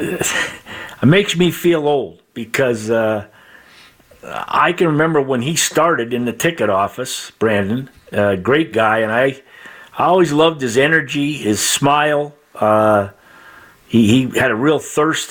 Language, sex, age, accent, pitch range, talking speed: English, male, 50-69, American, 110-150 Hz, 145 wpm